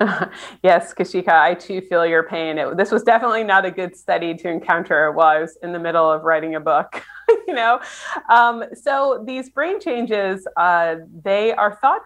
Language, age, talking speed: English, 30-49, 185 wpm